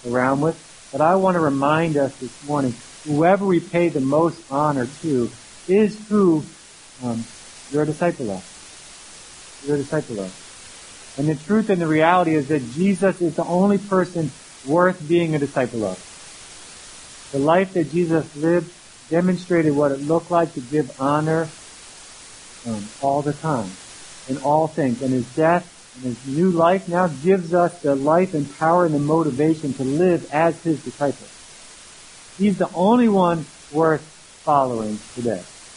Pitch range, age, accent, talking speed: 125-165 Hz, 50-69, American, 160 wpm